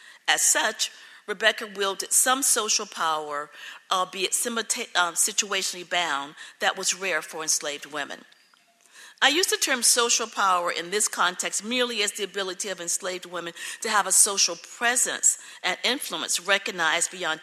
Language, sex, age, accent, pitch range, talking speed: English, female, 40-59, American, 175-225 Hz, 140 wpm